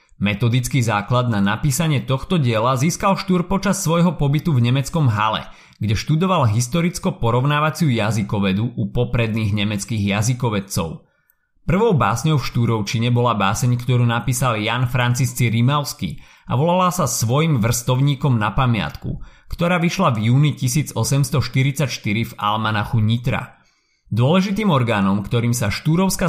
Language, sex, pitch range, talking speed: Slovak, male, 115-150 Hz, 120 wpm